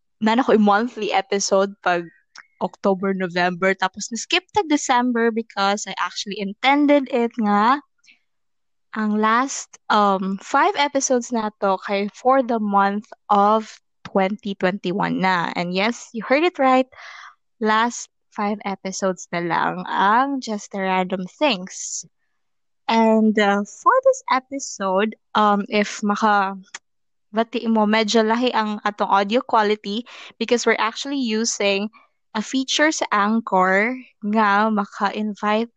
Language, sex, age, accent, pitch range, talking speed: Filipino, female, 20-39, native, 200-245 Hz, 120 wpm